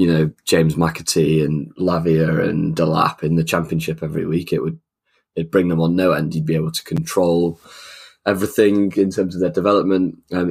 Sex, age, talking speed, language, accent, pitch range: male, 20-39, 195 wpm, English, British, 80-90 Hz